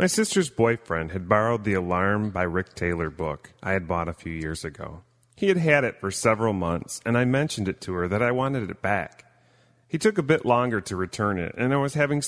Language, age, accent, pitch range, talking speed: English, 30-49, American, 85-120 Hz, 235 wpm